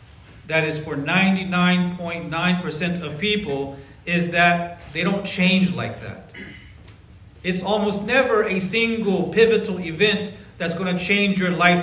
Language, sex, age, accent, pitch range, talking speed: English, male, 40-59, American, 155-200 Hz, 130 wpm